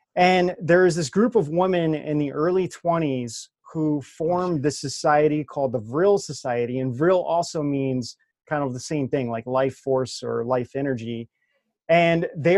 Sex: male